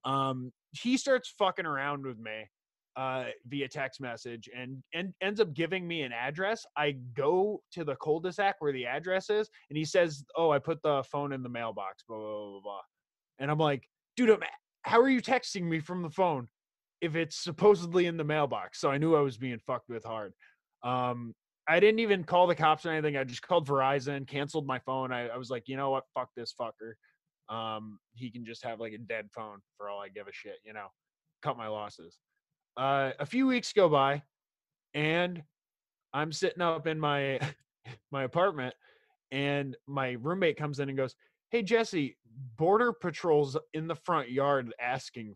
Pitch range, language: 130-180 Hz, English